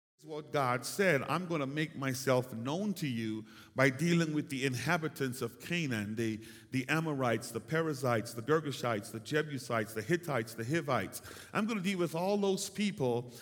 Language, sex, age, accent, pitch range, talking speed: English, male, 50-69, American, 130-175 Hz, 175 wpm